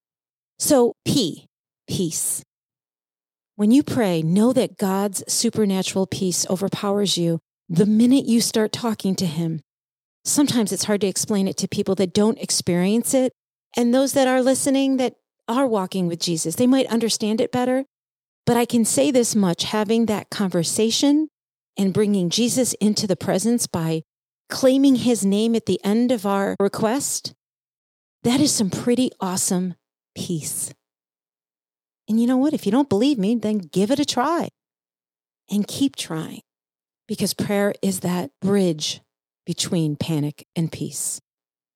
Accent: American